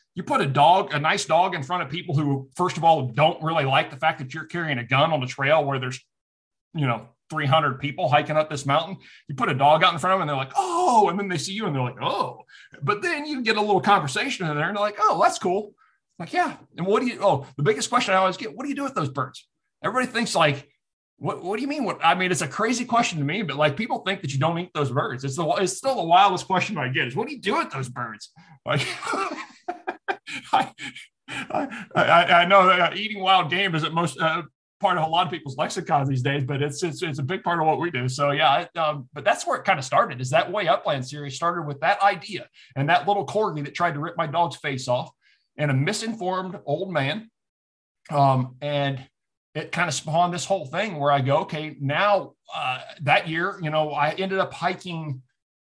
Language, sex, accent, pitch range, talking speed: English, male, American, 145-195 Hz, 250 wpm